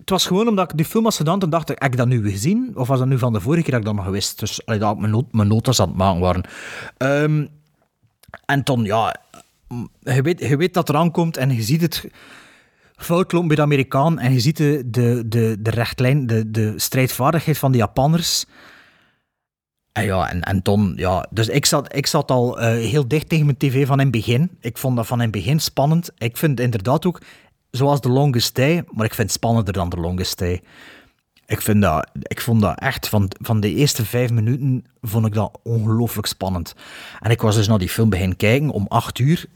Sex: male